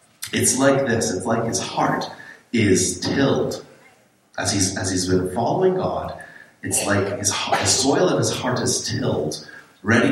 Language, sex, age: English, male, 40-59